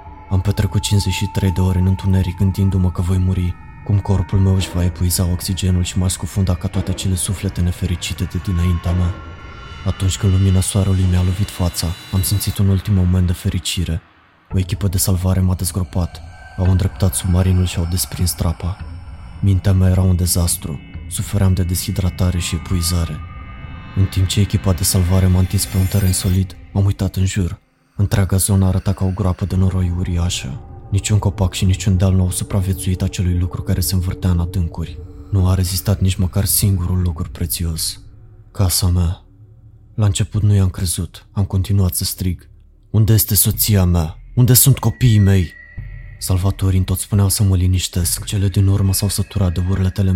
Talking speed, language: 175 wpm, Romanian